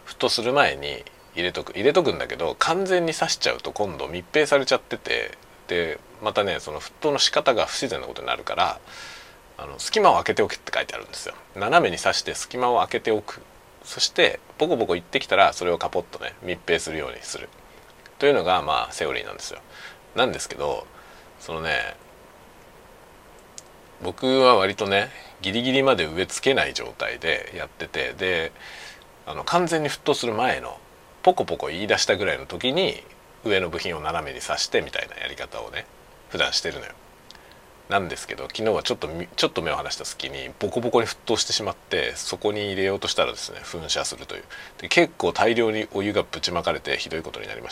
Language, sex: Japanese, male